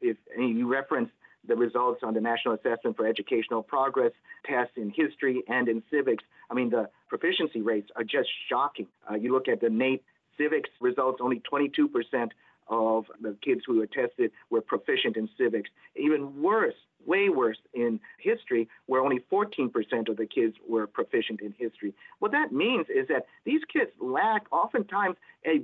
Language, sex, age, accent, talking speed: English, male, 50-69, American, 170 wpm